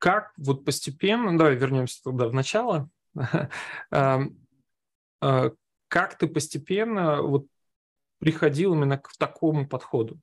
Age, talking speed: 20-39, 100 wpm